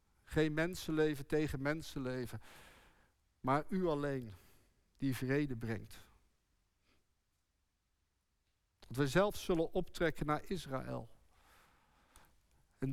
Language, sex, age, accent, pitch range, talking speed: Dutch, male, 50-69, Dutch, 100-155 Hz, 85 wpm